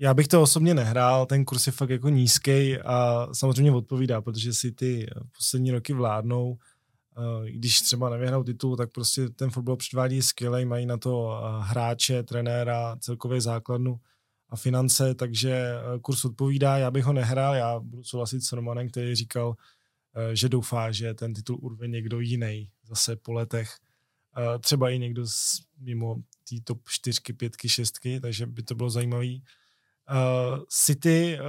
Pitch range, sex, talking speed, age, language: 120-130 Hz, male, 150 wpm, 20-39, Czech